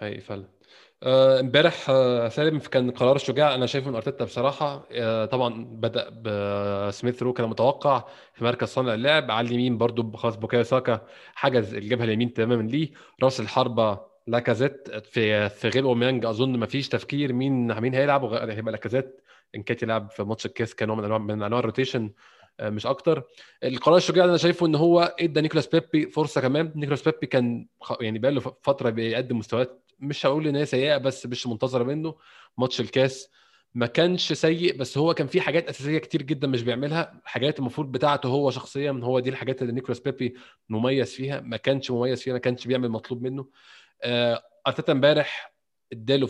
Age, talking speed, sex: 20-39, 170 wpm, male